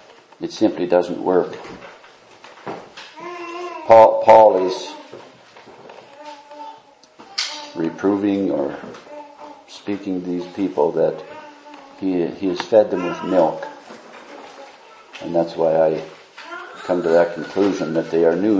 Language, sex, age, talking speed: English, male, 60-79, 105 wpm